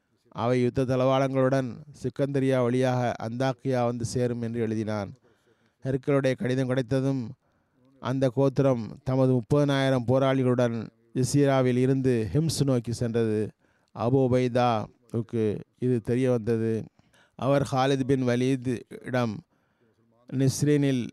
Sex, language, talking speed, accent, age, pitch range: male, Tamil, 95 wpm, native, 20-39, 115-135 Hz